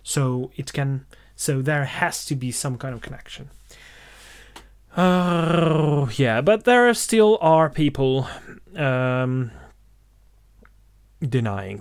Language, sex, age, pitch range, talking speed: English, male, 30-49, 115-150 Hz, 110 wpm